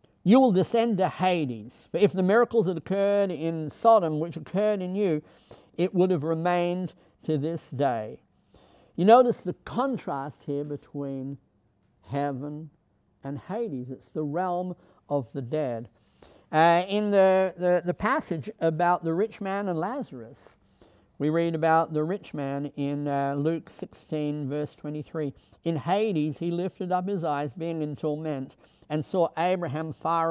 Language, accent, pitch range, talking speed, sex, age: English, American, 145-190 Hz, 150 wpm, male, 60-79